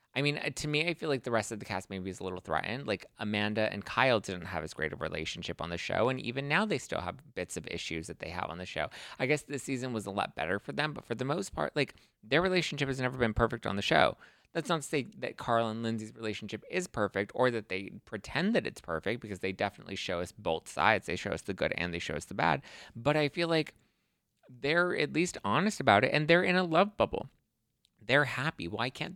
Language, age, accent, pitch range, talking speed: English, 20-39, American, 95-130 Hz, 260 wpm